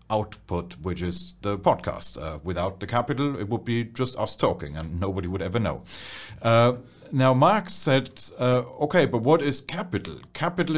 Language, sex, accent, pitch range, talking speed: English, male, German, 95-120 Hz, 175 wpm